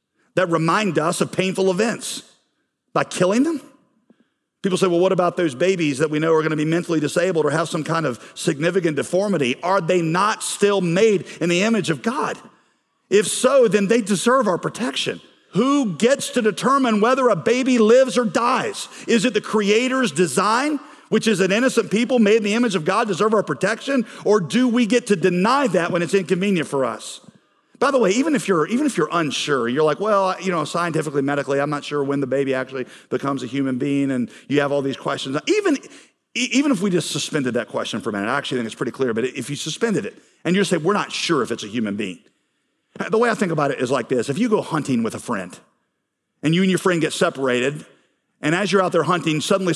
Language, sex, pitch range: English, male, 155-225 Hz